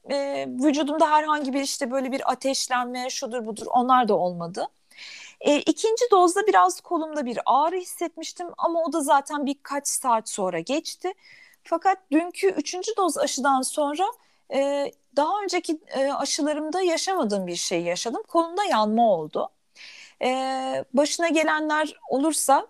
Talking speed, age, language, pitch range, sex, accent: 120 wpm, 40-59, Turkish, 235-325 Hz, female, native